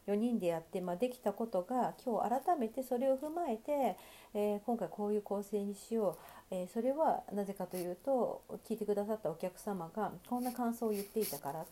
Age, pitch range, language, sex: 40-59, 185-255 Hz, Japanese, female